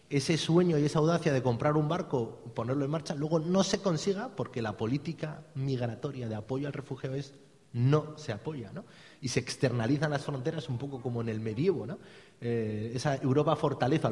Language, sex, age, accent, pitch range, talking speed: Spanish, male, 30-49, Spanish, 120-155 Hz, 190 wpm